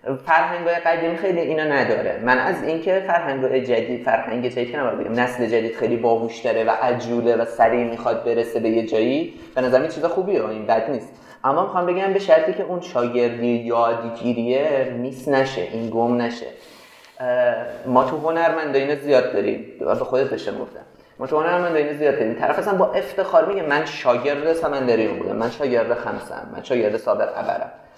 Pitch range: 125-170 Hz